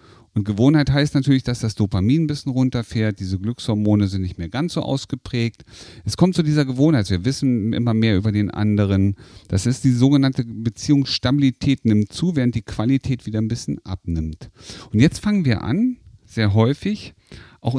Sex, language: male, German